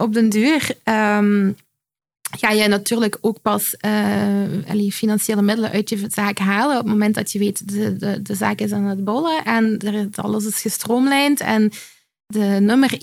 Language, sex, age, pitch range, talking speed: Dutch, female, 20-39, 205-240 Hz, 180 wpm